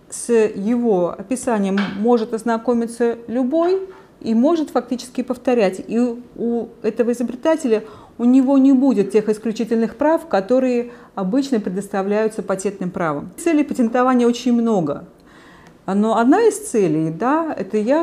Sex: female